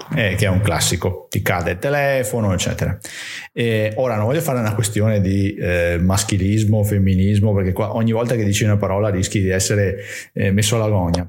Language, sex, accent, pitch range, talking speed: Italian, male, native, 100-115 Hz, 185 wpm